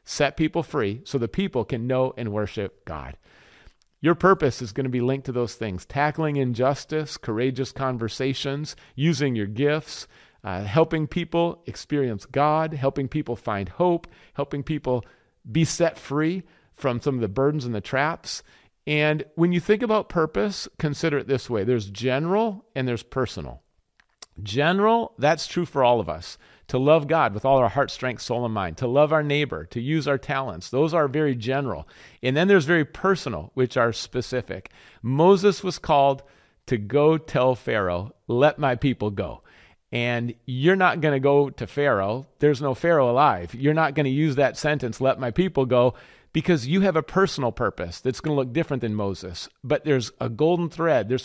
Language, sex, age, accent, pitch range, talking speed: English, male, 40-59, American, 120-155 Hz, 180 wpm